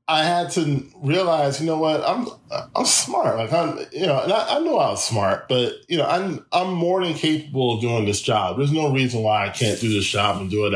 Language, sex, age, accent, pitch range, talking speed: English, male, 10-29, American, 115-140 Hz, 245 wpm